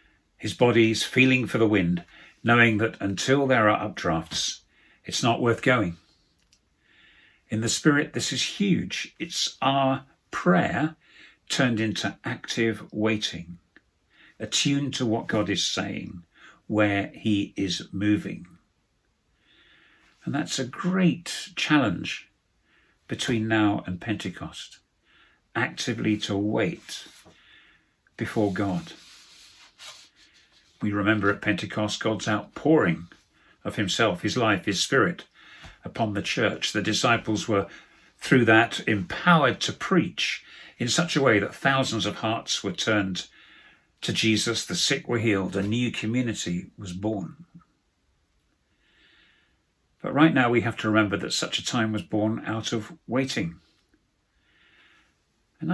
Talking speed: 125 wpm